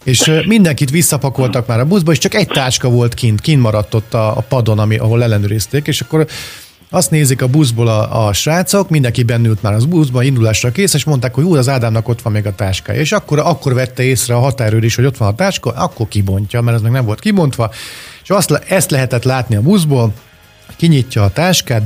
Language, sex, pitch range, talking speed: Hungarian, male, 120-155 Hz, 210 wpm